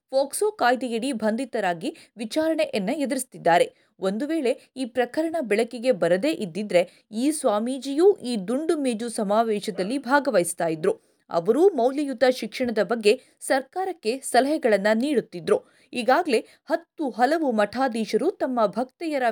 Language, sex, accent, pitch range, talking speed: Kannada, female, native, 215-285 Hz, 105 wpm